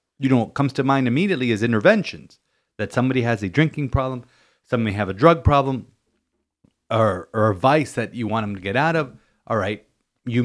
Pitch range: 105-140 Hz